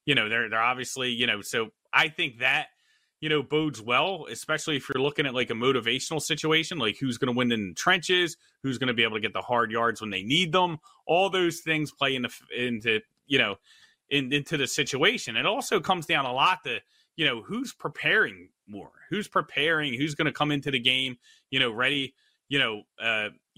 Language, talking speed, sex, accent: English, 210 wpm, male, American